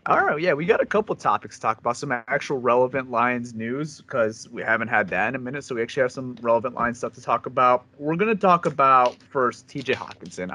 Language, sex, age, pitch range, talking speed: English, male, 30-49, 115-150 Hz, 245 wpm